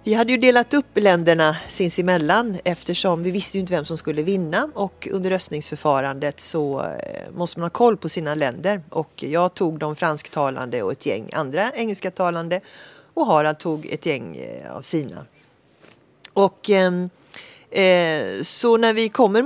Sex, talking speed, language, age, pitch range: female, 155 wpm, Swedish, 40-59, 160-210 Hz